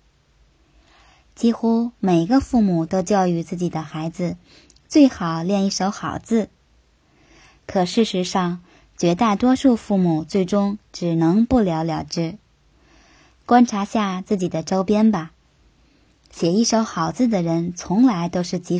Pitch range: 165-215 Hz